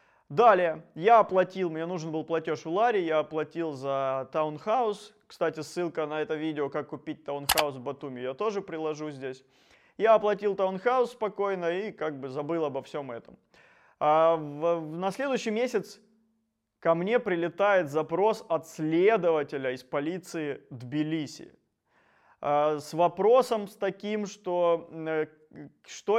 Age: 20-39